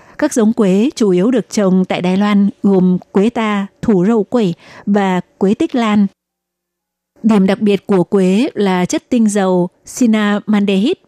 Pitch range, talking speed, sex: 195-225 Hz, 160 wpm, female